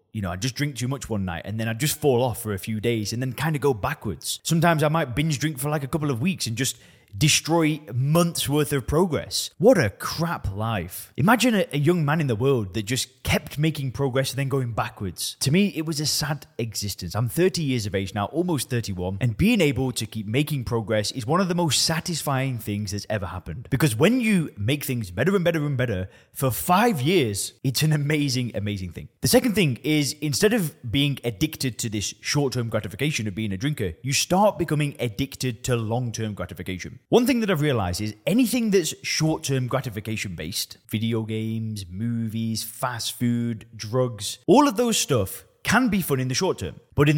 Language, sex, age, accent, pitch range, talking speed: English, male, 20-39, British, 110-155 Hz, 210 wpm